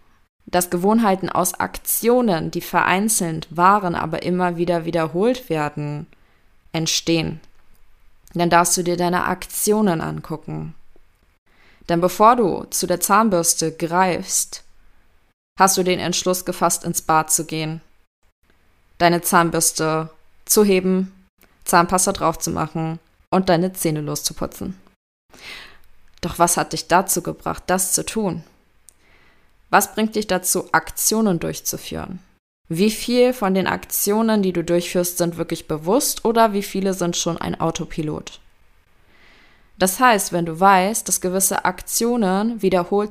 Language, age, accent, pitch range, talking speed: German, 20-39, German, 160-200 Hz, 125 wpm